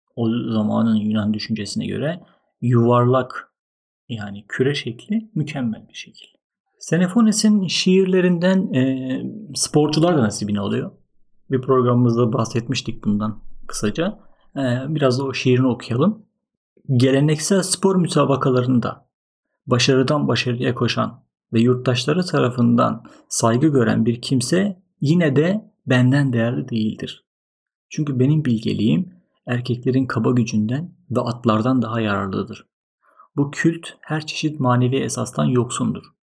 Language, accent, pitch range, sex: Turkish, native, 115-145 Hz, male